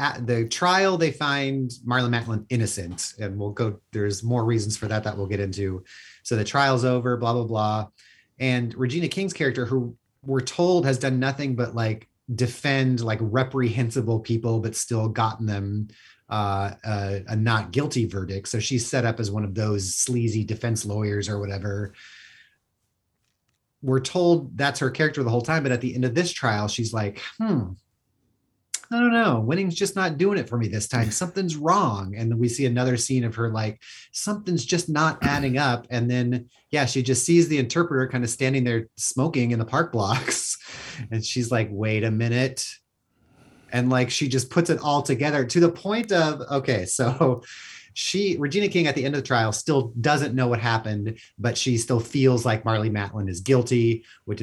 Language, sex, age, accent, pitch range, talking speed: English, male, 30-49, American, 110-135 Hz, 190 wpm